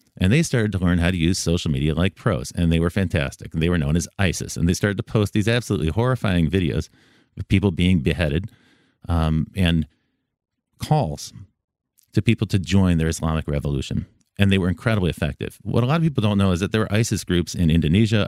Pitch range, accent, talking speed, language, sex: 85-110 Hz, American, 215 wpm, English, male